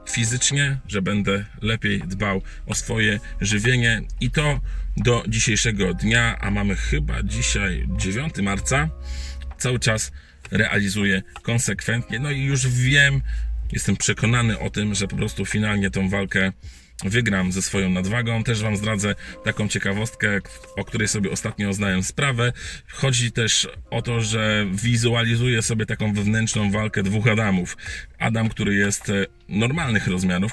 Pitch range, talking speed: 95-120 Hz, 135 wpm